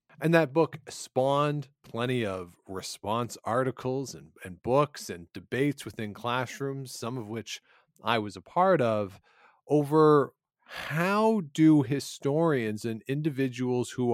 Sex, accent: male, American